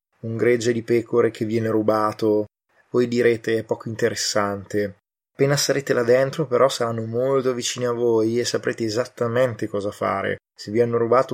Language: Italian